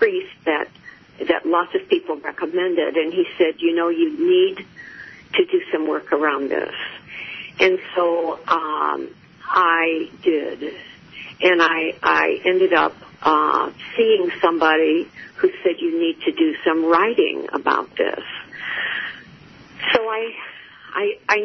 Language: English